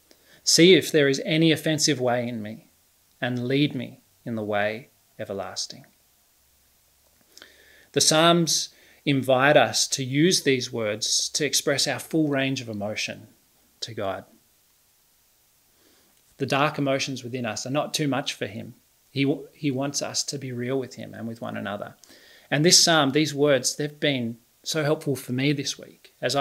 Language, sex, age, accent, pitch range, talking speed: English, male, 30-49, Australian, 115-145 Hz, 165 wpm